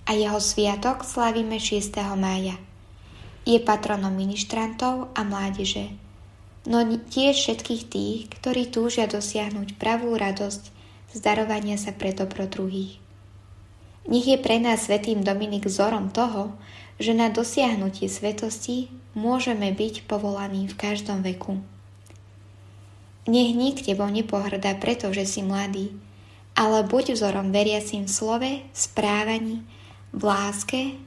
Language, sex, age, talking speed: Slovak, female, 10-29, 110 wpm